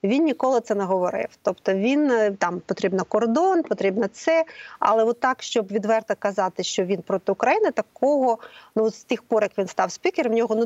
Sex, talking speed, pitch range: female, 185 wpm, 200-240 Hz